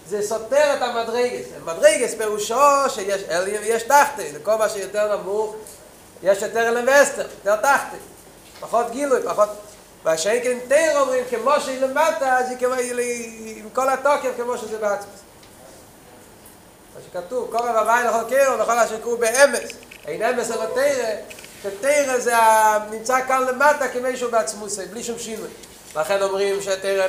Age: 30-49